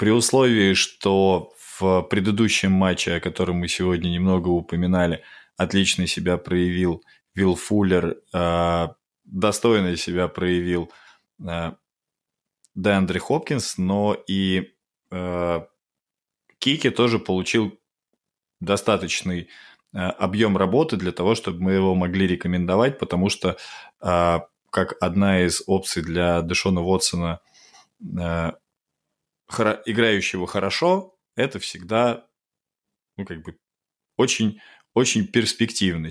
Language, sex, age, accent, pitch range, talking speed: Russian, male, 20-39, native, 85-100 Hz, 95 wpm